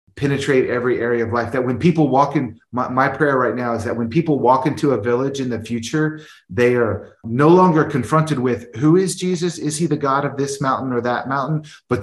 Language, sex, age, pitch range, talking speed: English, male, 30-49, 110-130 Hz, 230 wpm